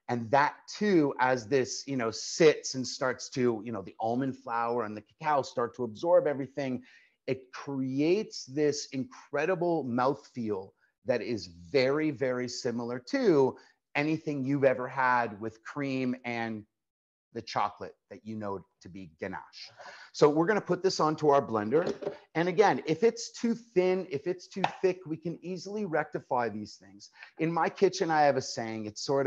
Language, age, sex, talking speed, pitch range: English, 30-49, male, 170 wpm, 125-185 Hz